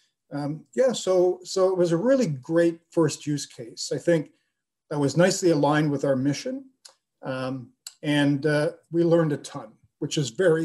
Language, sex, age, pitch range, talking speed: English, male, 40-59, 145-180 Hz, 175 wpm